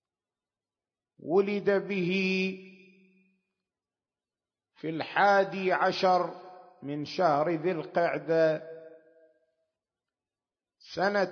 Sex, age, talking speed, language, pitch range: male, 50-69, 55 wpm, Arabic, 165-195 Hz